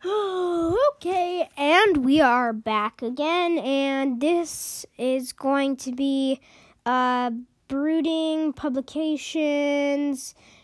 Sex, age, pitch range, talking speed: female, 10-29, 245-305 Hz, 85 wpm